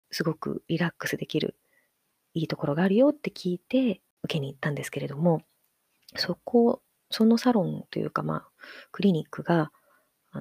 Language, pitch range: Japanese, 165-230 Hz